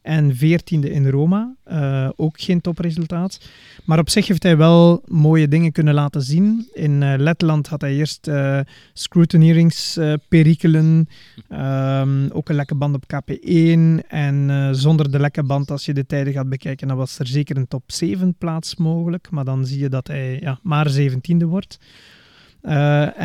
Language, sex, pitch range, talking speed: Dutch, male, 140-165 Hz, 175 wpm